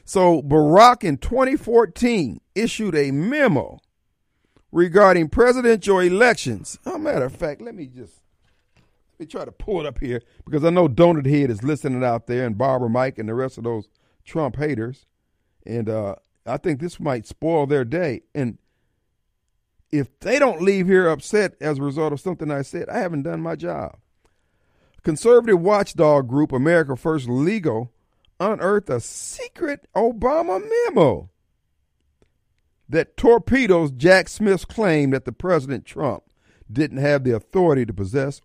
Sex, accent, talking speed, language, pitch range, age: male, American, 155 wpm, English, 115-185 Hz, 50-69